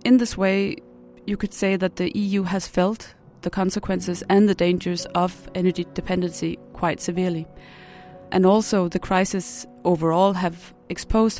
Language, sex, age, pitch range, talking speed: English, female, 30-49, 175-195 Hz, 145 wpm